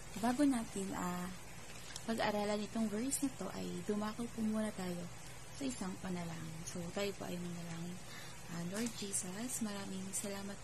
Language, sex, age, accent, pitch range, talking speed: Filipino, female, 20-39, native, 175-220 Hz, 160 wpm